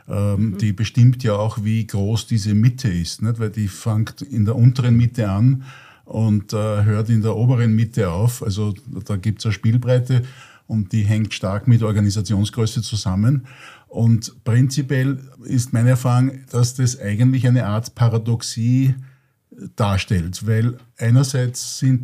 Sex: male